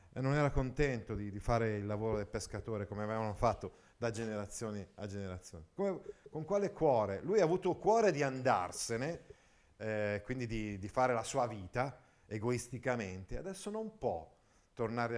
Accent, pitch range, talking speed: native, 105-160 Hz, 160 wpm